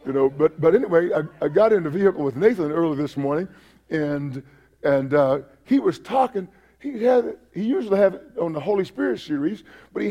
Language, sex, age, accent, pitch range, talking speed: English, male, 50-69, American, 170-235 Hz, 215 wpm